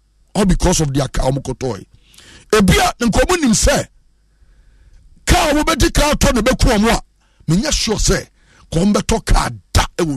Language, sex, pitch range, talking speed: English, male, 150-225 Hz, 130 wpm